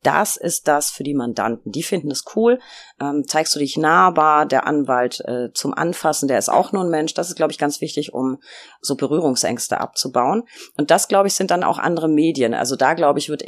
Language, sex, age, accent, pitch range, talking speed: German, female, 30-49, German, 125-155 Hz, 225 wpm